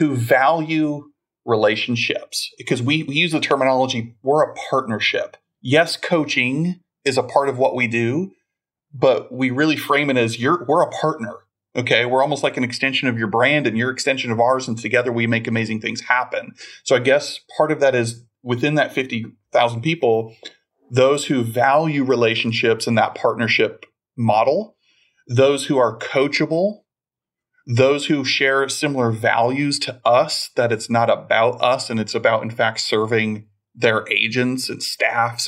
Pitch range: 115-140 Hz